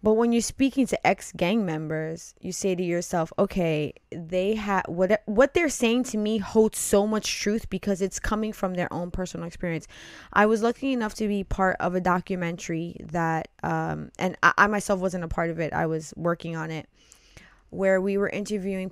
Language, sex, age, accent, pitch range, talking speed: English, female, 20-39, American, 170-200 Hz, 195 wpm